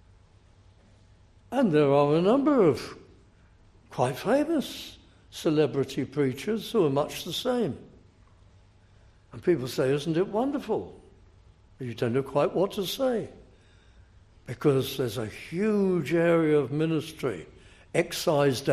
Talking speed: 115 wpm